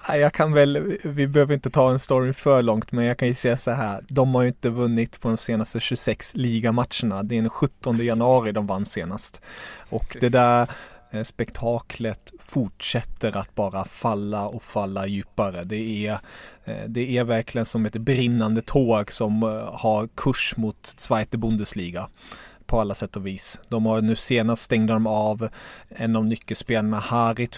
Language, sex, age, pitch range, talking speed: Swedish, male, 30-49, 110-125 Hz, 170 wpm